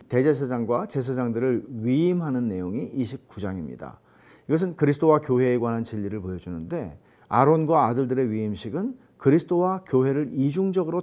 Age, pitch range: 40-59, 115-180 Hz